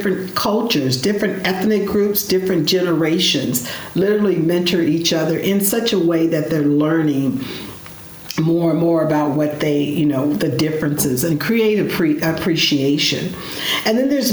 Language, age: English, 50-69